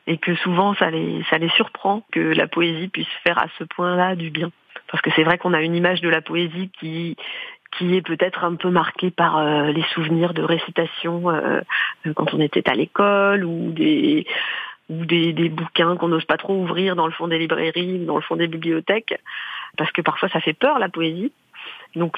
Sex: female